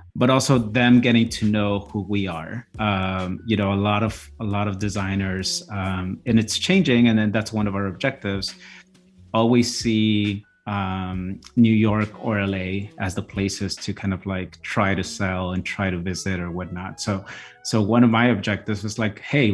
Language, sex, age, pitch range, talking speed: English, male, 30-49, 95-110 Hz, 190 wpm